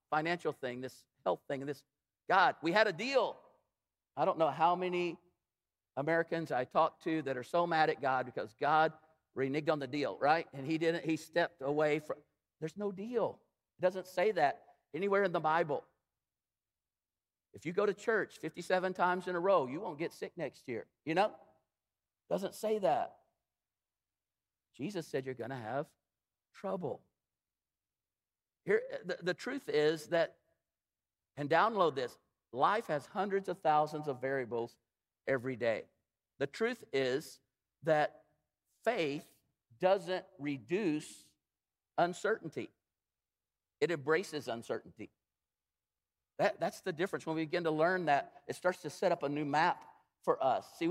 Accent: American